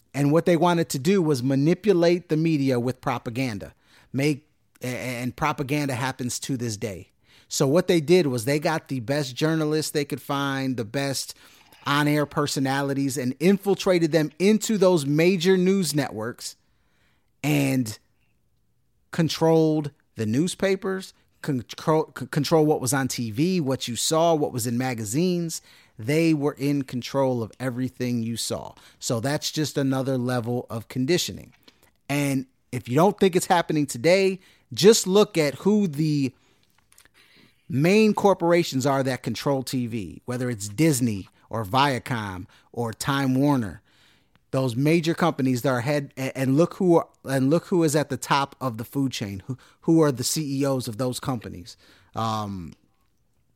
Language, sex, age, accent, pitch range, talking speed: English, male, 30-49, American, 125-160 Hz, 150 wpm